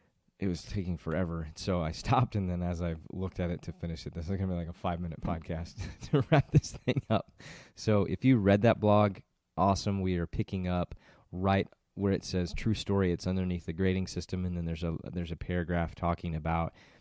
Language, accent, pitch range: English, American, 85-95 Hz